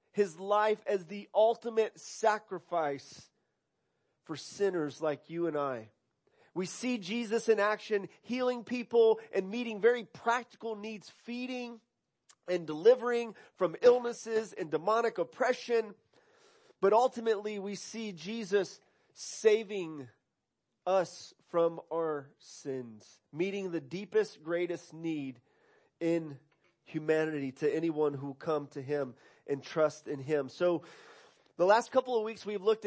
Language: English